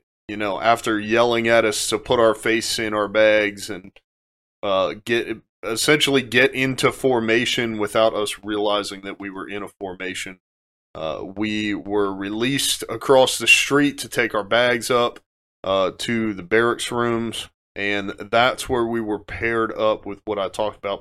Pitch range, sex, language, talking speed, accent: 100-115 Hz, male, English, 165 wpm, American